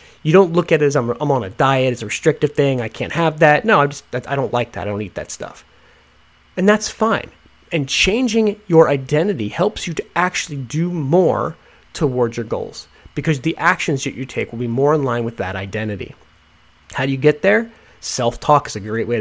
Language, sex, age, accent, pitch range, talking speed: English, male, 30-49, American, 120-170 Hz, 210 wpm